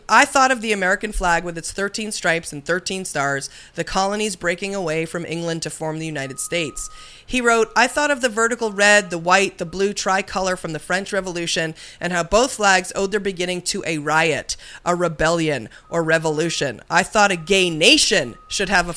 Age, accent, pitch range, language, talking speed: 30-49, American, 165-210 Hz, English, 200 wpm